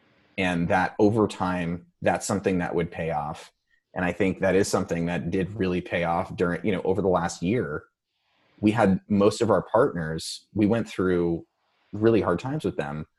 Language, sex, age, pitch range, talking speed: English, male, 30-49, 85-100 Hz, 190 wpm